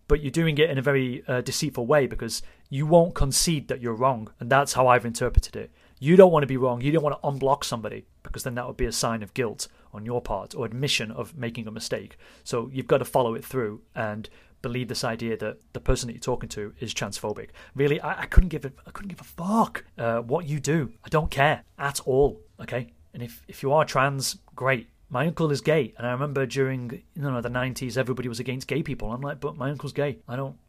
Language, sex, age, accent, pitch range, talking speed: English, male, 30-49, British, 120-150 Hz, 250 wpm